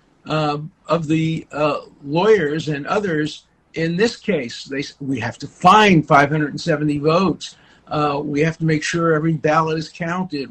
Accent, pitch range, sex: American, 150-180 Hz, male